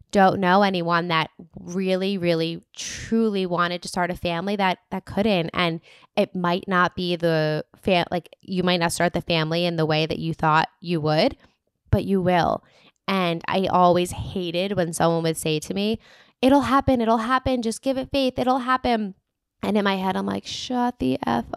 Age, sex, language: 10-29, female, English